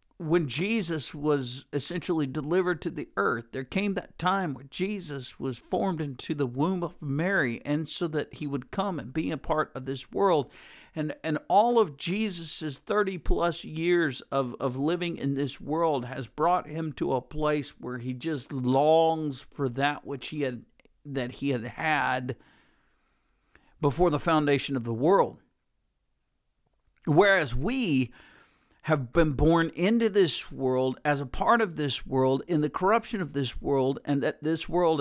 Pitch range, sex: 135-165 Hz, male